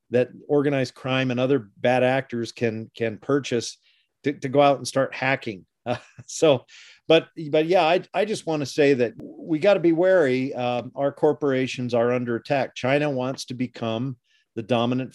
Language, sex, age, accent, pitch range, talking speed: English, male, 40-59, American, 110-135 Hz, 175 wpm